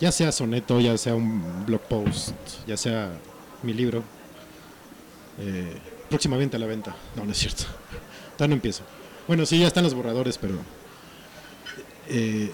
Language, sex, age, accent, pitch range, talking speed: Spanish, male, 40-59, Mexican, 110-145 Hz, 155 wpm